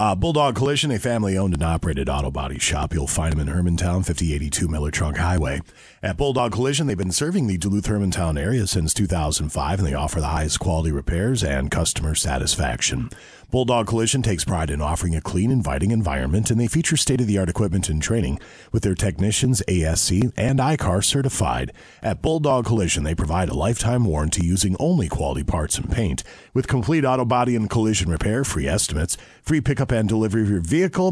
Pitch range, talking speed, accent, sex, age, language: 85-125 Hz, 180 wpm, American, male, 40-59, English